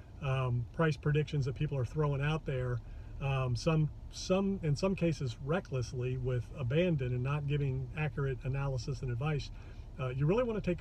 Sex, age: male, 40-59